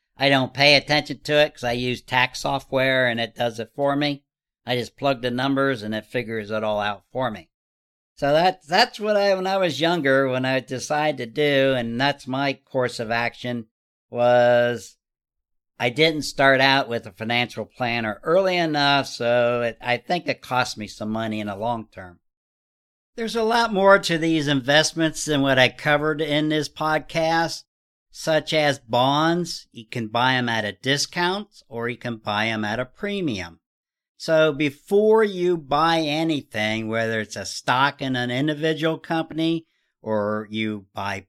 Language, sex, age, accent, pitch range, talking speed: English, male, 60-79, American, 115-155 Hz, 175 wpm